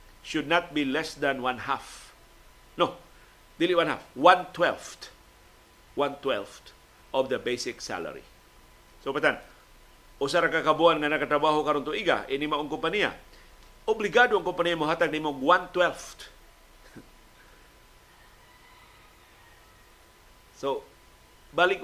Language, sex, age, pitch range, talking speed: Filipino, male, 50-69, 135-175 Hz, 100 wpm